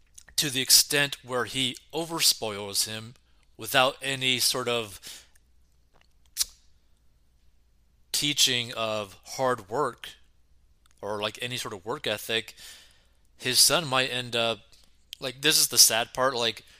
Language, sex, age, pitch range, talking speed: English, male, 20-39, 90-120 Hz, 120 wpm